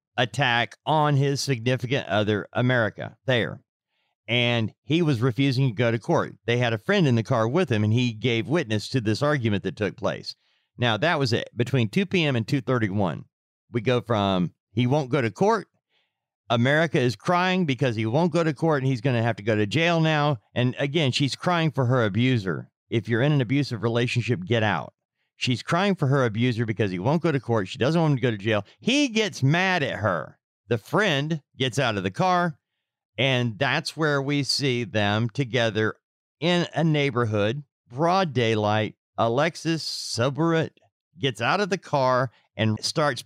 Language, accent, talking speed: English, American, 190 wpm